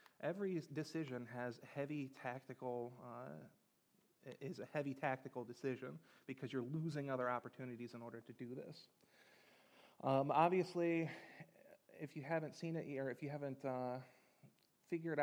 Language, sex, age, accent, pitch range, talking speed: English, male, 30-49, American, 125-155 Hz, 135 wpm